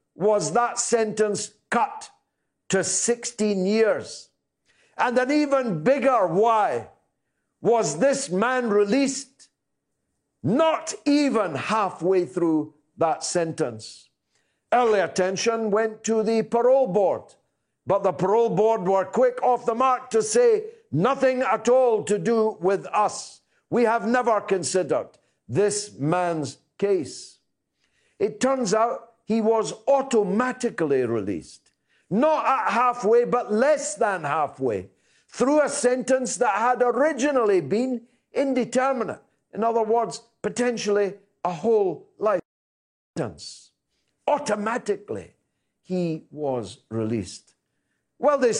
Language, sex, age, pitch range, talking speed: English, male, 60-79, 200-260 Hz, 110 wpm